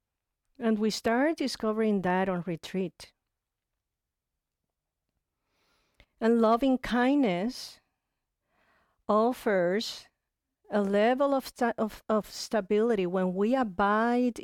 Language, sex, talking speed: English, female, 85 wpm